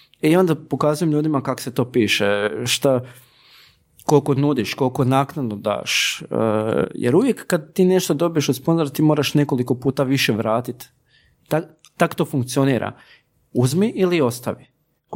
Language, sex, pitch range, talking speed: Croatian, male, 120-155 Hz, 145 wpm